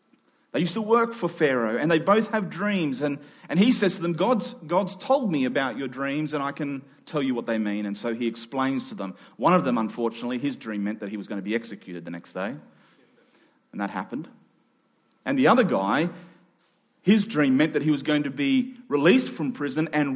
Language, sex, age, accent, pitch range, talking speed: English, male, 30-49, Australian, 135-215 Hz, 225 wpm